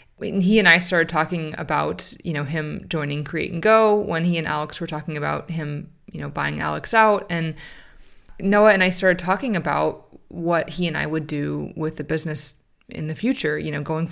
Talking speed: 205 wpm